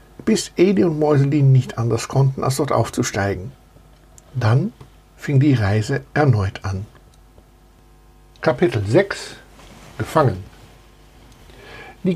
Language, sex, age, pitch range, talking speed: German, male, 60-79, 115-150 Hz, 100 wpm